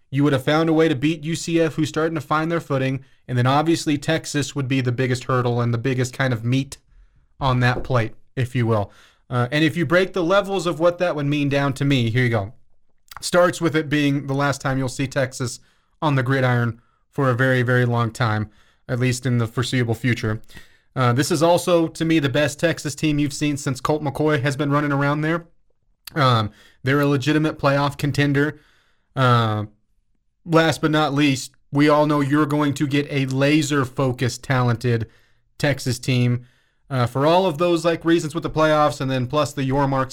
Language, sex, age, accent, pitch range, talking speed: English, male, 30-49, American, 125-155 Hz, 205 wpm